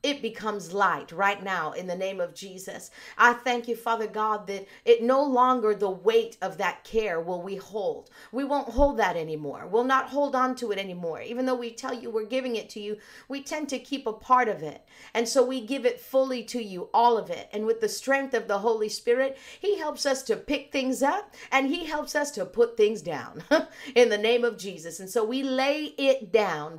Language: English